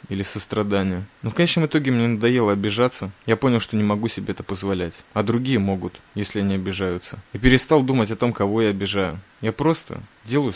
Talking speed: 195 wpm